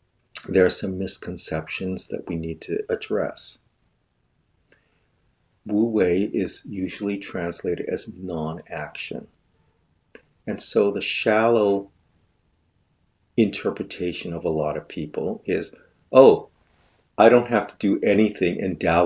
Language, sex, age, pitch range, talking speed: English, male, 50-69, 90-120 Hz, 115 wpm